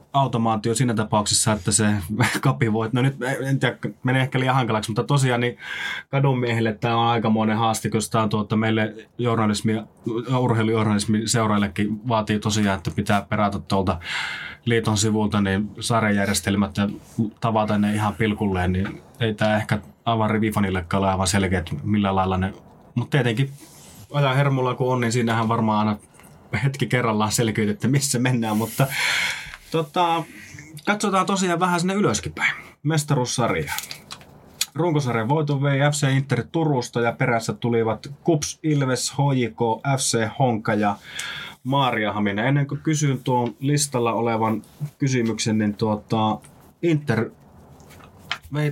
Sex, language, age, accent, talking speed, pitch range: male, Finnish, 20-39, native, 130 wpm, 110-135 Hz